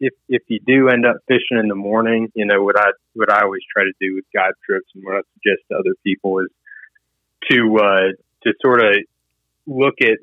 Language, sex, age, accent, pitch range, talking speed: English, male, 30-49, American, 95-120 Hz, 225 wpm